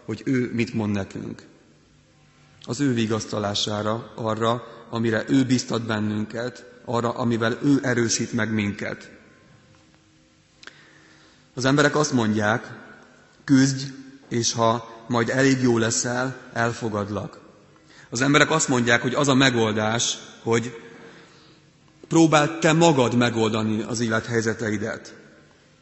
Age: 30-49